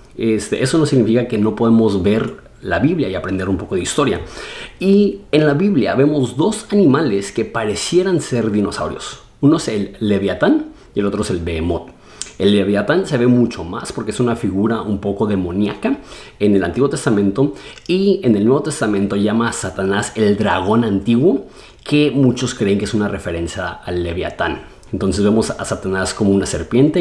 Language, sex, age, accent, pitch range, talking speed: Spanish, male, 30-49, Mexican, 95-120 Hz, 180 wpm